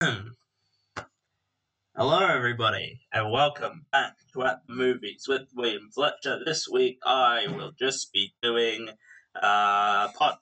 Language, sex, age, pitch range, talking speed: English, male, 10-29, 105-130 Hz, 120 wpm